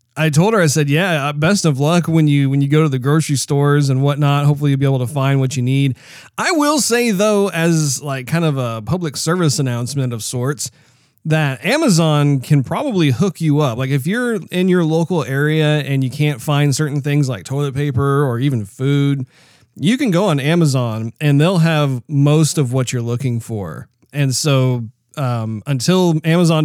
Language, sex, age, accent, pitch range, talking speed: English, male, 30-49, American, 130-160 Hz, 200 wpm